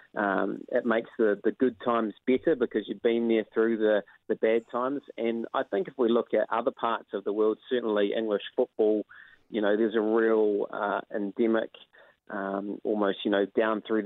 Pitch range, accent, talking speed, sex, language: 105-120 Hz, Australian, 190 wpm, male, English